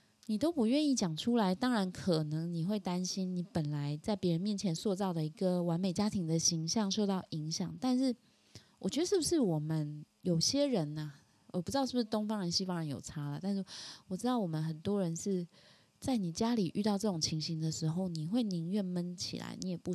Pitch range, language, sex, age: 165-215 Hz, Chinese, female, 20-39